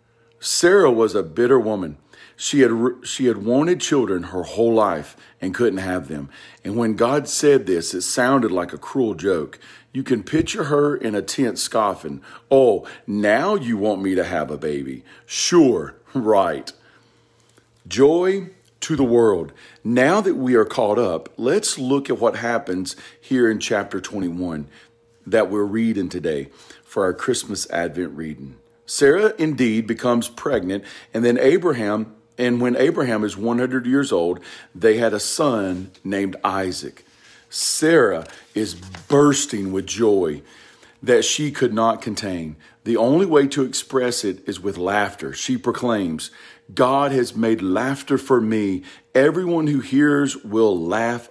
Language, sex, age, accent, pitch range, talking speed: English, male, 40-59, American, 95-130 Hz, 150 wpm